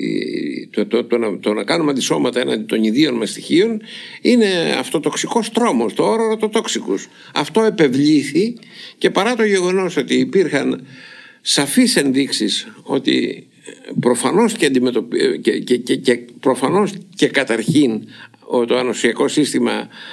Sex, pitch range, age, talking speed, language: male, 145-230 Hz, 60-79, 135 wpm, Greek